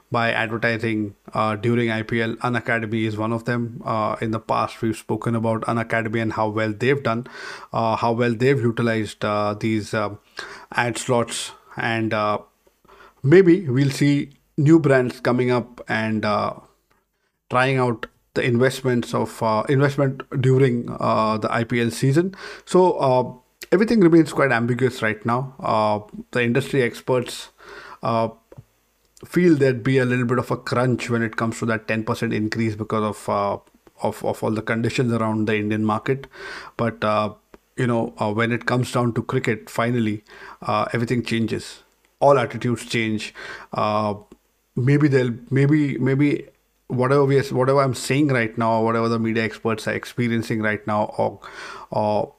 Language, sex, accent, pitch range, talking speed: English, male, Indian, 110-130 Hz, 160 wpm